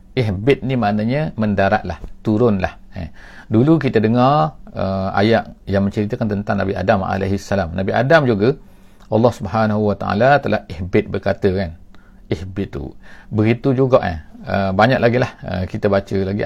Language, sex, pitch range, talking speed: English, male, 95-115 Hz, 140 wpm